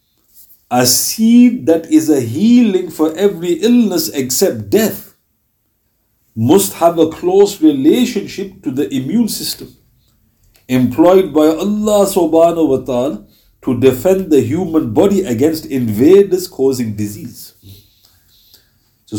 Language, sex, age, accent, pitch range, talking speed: English, male, 50-69, Indian, 110-160 Hz, 110 wpm